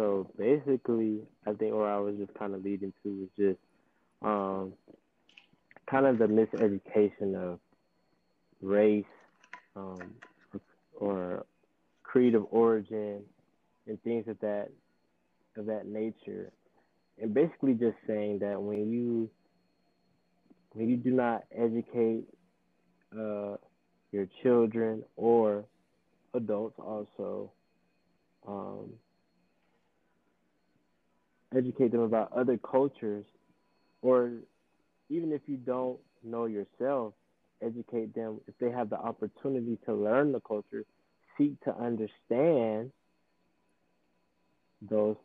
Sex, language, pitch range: male, English, 100-120 Hz